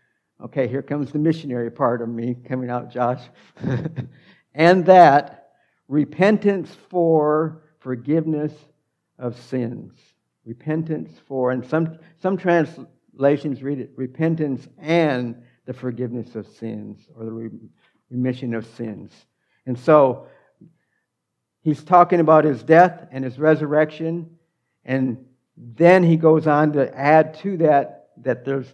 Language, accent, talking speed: English, American, 120 wpm